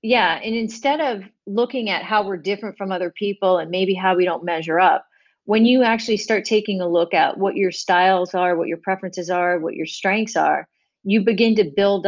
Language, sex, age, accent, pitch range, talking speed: English, female, 40-59, American, 180-230 Hz, 215 wpm